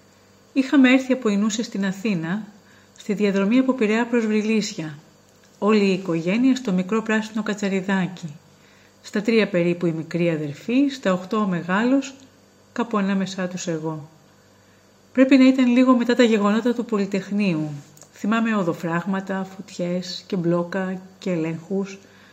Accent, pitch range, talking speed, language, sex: native, 170-235 Hz, 130 wpm, Greek, female